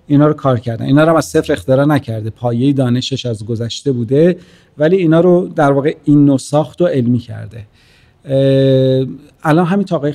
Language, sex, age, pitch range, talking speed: Persian, male, 40-59, 115-145 Hz, 170 wpm